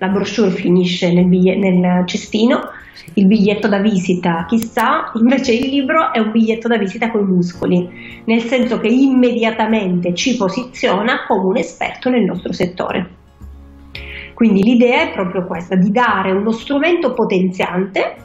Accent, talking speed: native, 150 wpm